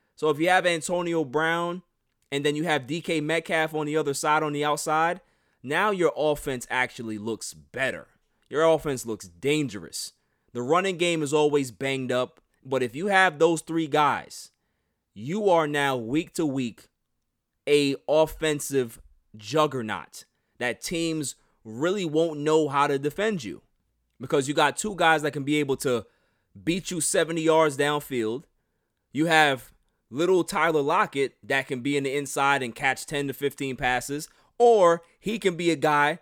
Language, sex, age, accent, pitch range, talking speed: English, male, 20-39, American, 135-170 Hz, 165 wpm